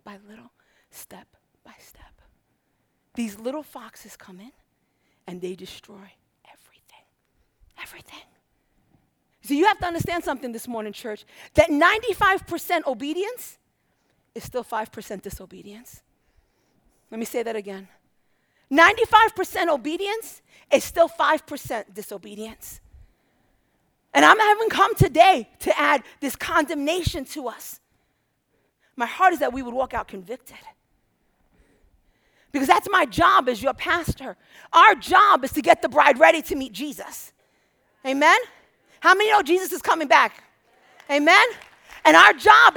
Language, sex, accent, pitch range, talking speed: English, female, American, 250-375 Hz, 130 wpm